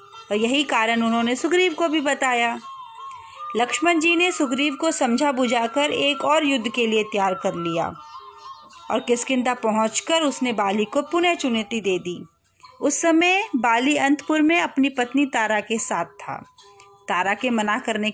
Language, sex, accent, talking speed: Hindi, female, native, 160 wpm